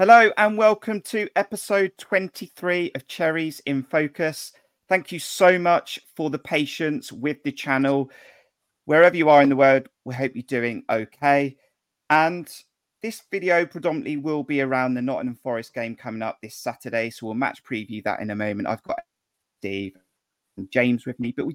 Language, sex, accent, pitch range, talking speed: English, male, British, 125-155 Hz, 175 wpm